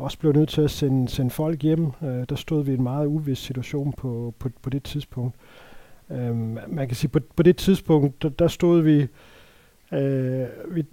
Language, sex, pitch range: Danish, male, 130-160 Hz